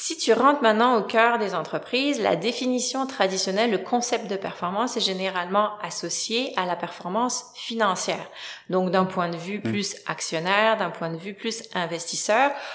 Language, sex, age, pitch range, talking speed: French, female, 30-49, 180-225 Hz, 165 wpm